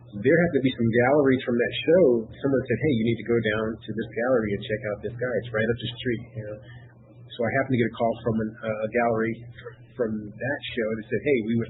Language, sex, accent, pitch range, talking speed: English, male, American, 110-130 Hz, 270 wpm